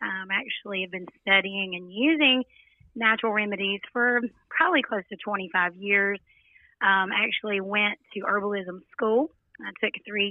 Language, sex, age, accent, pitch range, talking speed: English, female, 30-49, American, 190-230 Hz, 150 wpm